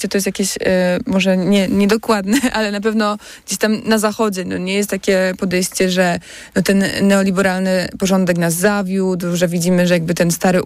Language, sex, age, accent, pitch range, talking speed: Polish, female, 20-39, native, 180-205 Hz, 180 wpm